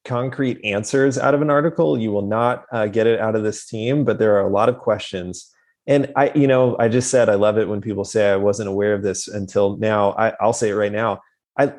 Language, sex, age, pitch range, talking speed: English, male, 30-49, 100-120 Hz, 255 wpm